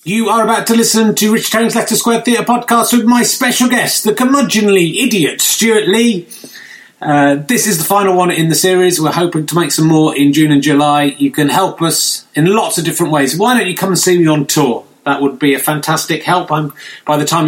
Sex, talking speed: male, 230 wpm